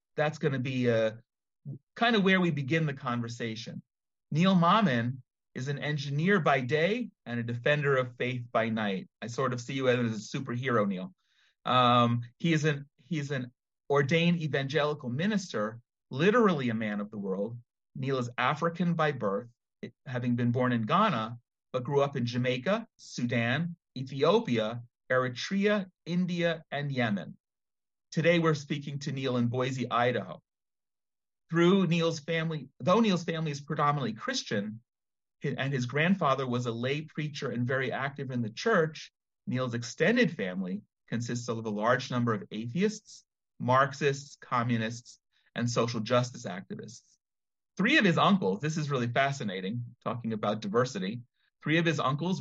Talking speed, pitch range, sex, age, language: 150 wpm, 120-165 Hz, male, 30-49, English